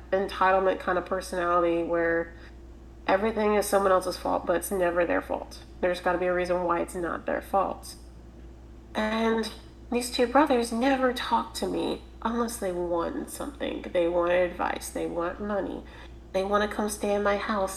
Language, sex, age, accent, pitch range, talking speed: English, female, 30-49, American, 170-210 Hz, 175 wpm